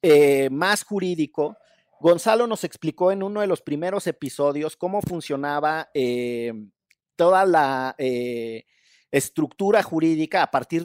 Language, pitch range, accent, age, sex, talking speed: Spanish, 135-180 Hz, Mexican, 40-59, male, 120 wpm